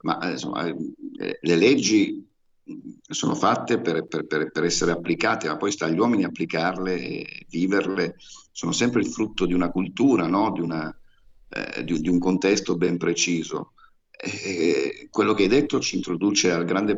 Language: Italian